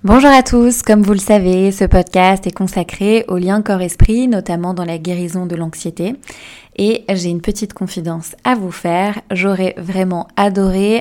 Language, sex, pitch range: French, female, 180-215 Hz